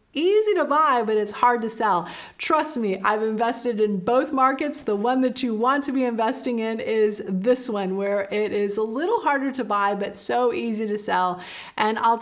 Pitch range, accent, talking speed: 205-250 Hz, American, 205 wpm